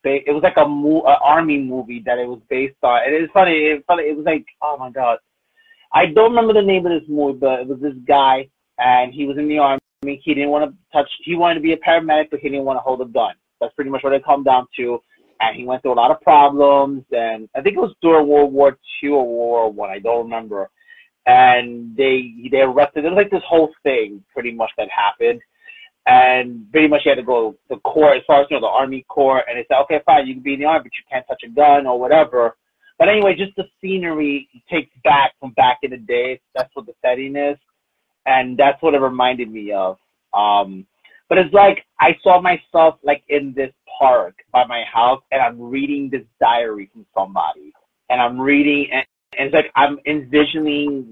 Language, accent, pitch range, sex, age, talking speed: English, American, 125-160 Hz, male, 30-49, 235 wpm